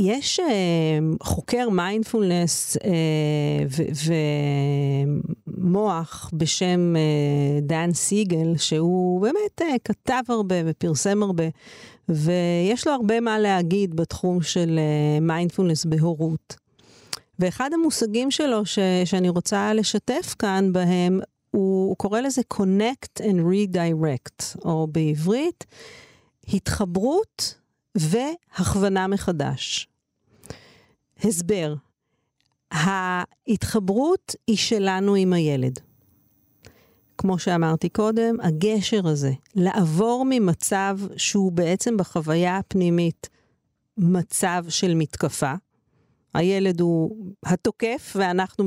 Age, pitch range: 50-69, 165-210 Hz